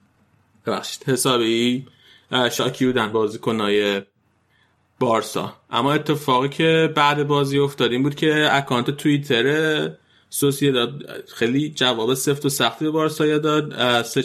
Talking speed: 115 wpm